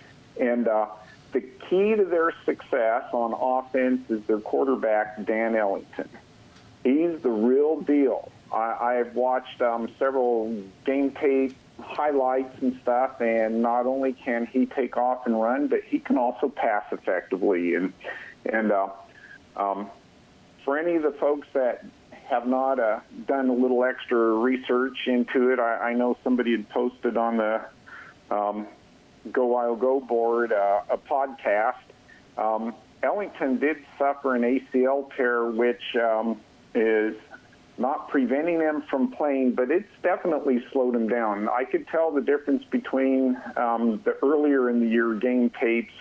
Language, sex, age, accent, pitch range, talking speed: English, male, 50-69, American, 115-135 Hz, 140 wpm